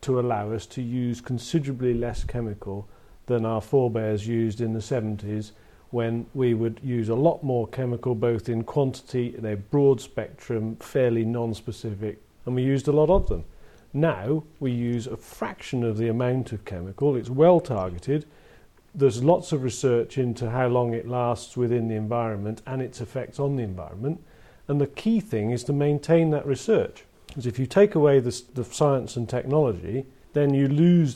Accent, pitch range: British, 115-135 Hz